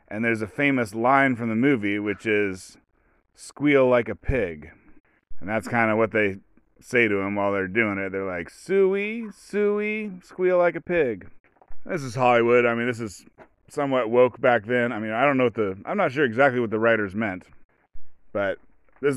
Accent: American